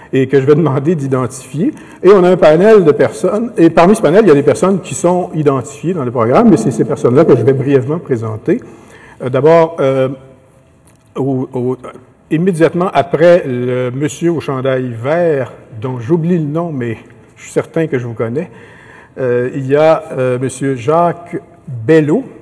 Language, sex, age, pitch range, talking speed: French, male, 50-69, 120-155 Hz, 185 wpm